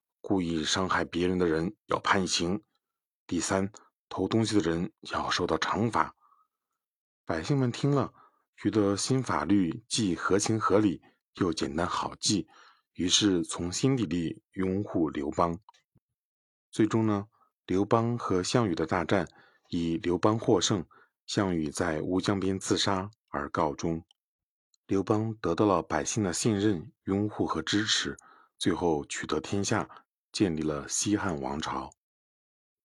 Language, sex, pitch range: Chinese, male, 80-105 Hz